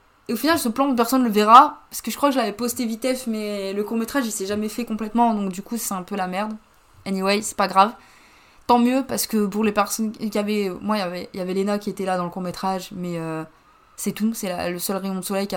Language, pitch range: French, 195-230 Hz